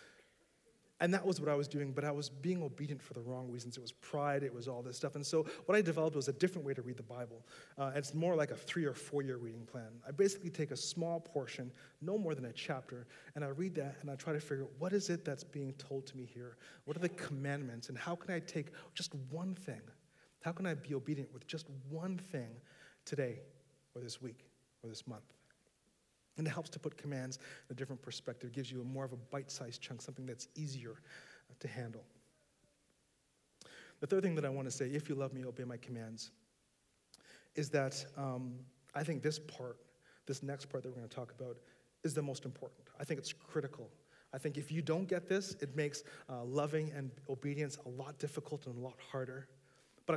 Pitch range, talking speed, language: 130-155 Hz, 225 wpm, English